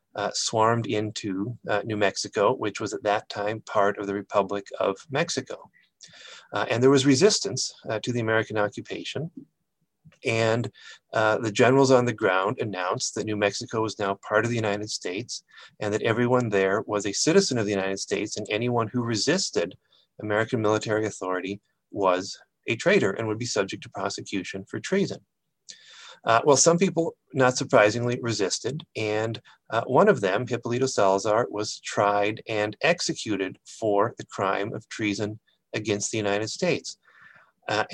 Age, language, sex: 40-59, English, male